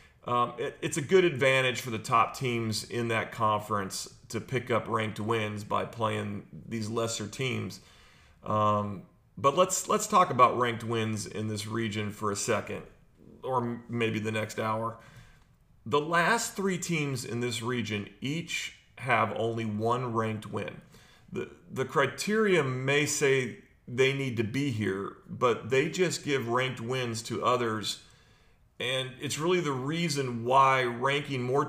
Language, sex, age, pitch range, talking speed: English, male, 40-59, 115-145 Hz, 155 wpm